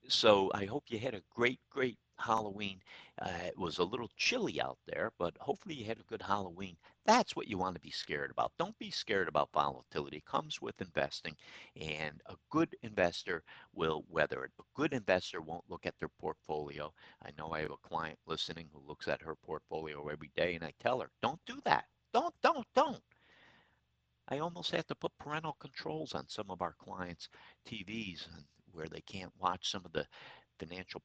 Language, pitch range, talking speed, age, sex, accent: English, 80-130 Hz, 195 wpm, 60-79, male, American